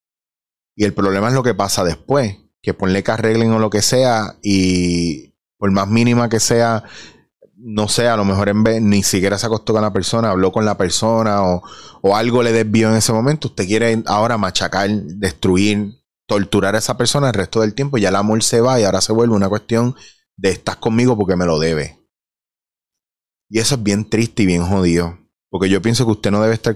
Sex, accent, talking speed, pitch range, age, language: male, Venezuelan, 215 wpm, 100-120 Hz, 30-49, Spanish